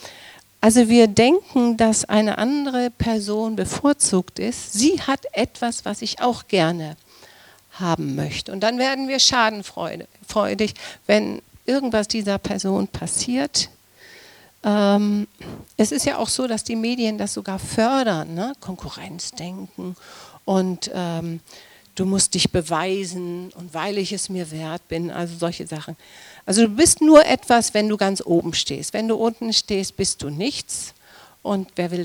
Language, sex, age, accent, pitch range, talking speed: German, female, 50-69, German, 170-230 Hz, 145 wpm